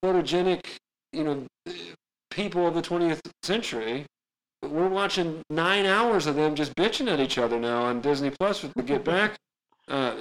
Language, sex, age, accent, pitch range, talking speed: English, male, 40-59, American, 125-170 Hz, 165 wpm